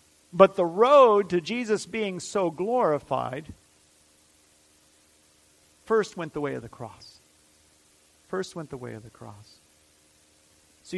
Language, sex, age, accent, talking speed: English, male, 50-69, American, 125 wpm